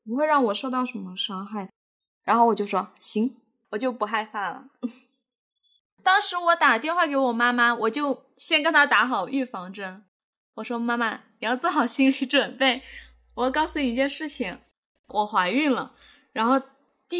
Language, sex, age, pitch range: Chinese, female, 20-39, 230-275 Hz